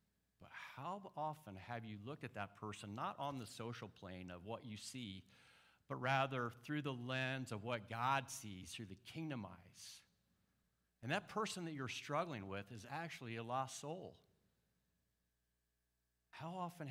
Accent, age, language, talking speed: American, 50-69, English, 160 wpm